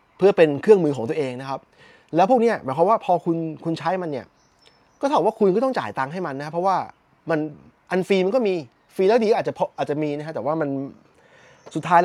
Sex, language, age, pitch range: male, Thai, 20-39, 130-185 Hz